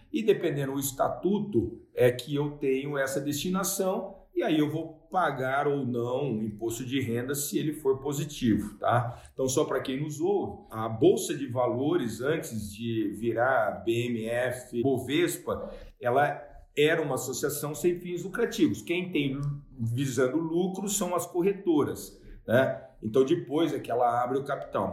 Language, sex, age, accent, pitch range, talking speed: Portuguese, male, 50-69, Brazilian, 120-175 Hz, 150 wpm